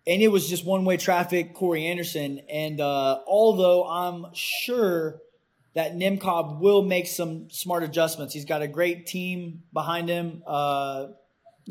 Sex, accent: male, American